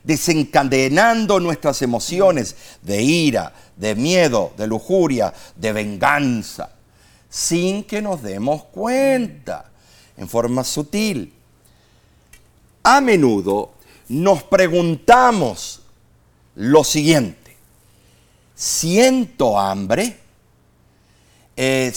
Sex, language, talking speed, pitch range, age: male, Spanish, 75 wpm, 120-175 Hz, 50-69